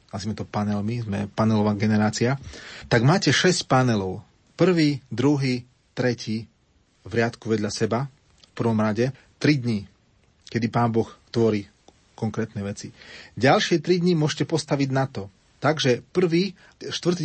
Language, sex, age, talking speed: Slovak, male, 30-49, 135 wpm